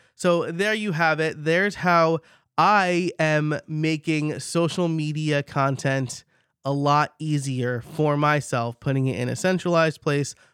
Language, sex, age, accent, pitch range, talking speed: English, male, 20-39, American, 125-155 Hz, 135 wpm